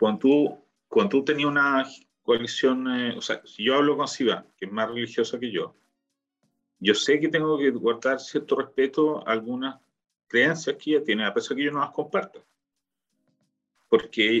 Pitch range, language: 115-150 Hz, Spanish